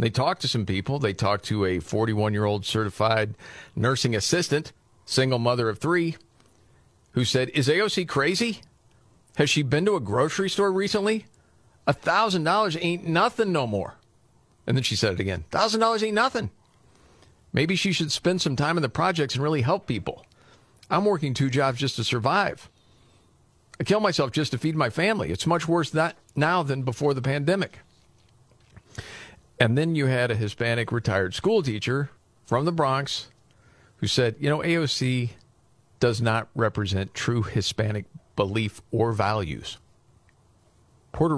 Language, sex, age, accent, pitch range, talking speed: English, male, 50-69, American, 110-145 Hz, 155 wpm